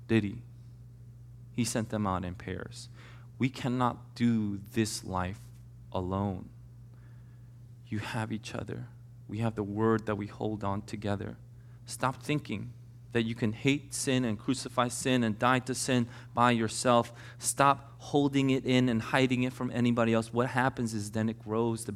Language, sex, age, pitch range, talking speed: English, male, 30-49, 115-130 Hz, 160 wpm